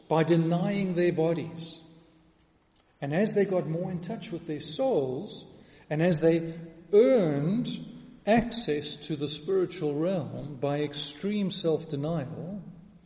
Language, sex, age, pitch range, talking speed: English, male, 40-59, 155-200 Hz, 120 wpm